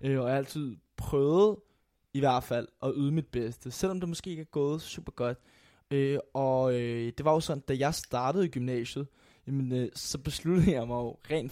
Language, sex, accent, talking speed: Danish, male, native, 205 wpm